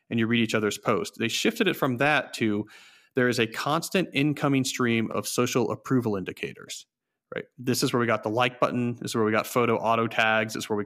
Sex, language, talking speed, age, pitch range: male, English, 240 wpm, 40-59, 110-135 Hz